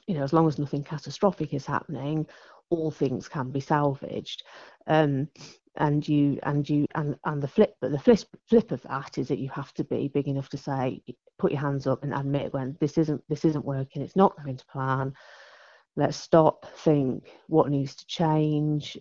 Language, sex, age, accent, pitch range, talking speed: English, female, 30-49, British, 140-160 Hz, 200 wpm